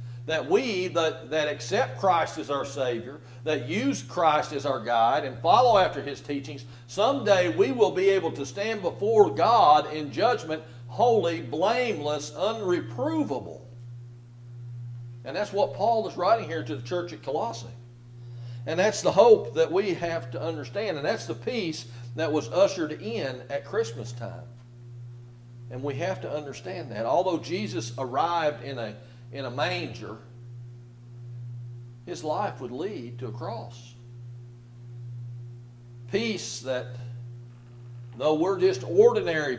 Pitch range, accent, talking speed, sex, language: 120-150 Hz, American, 140 wpm, male, English